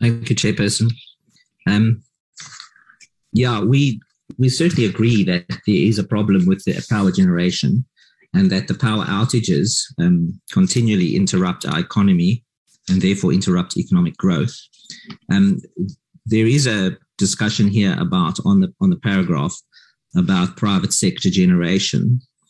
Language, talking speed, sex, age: English, 130 wpm, male, 50-69